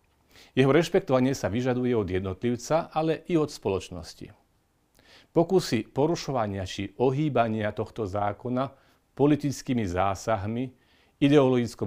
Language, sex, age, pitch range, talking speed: Slovak, male, 40-59, 100-130 Hz, 95 wpm